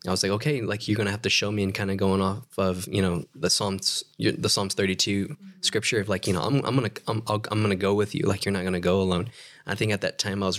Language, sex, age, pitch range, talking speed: English, male, 20-39, 95-115 Hz, 310 wpm